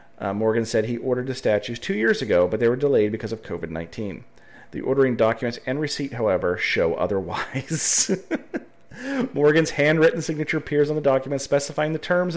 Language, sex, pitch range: English, male, 115-150 Hz